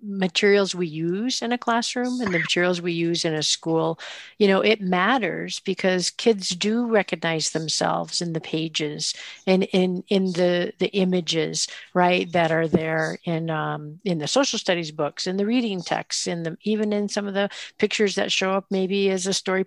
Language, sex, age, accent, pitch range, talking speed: English, female, 50-69, American, 165-200 Hz, 190 wpm